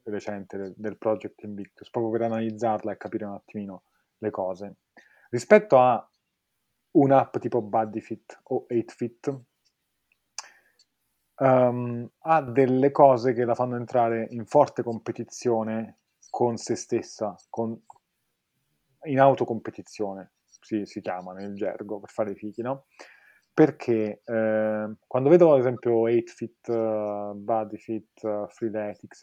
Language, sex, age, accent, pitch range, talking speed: Italian, male, 30-49, native, 105-120 Hz, 115 wpm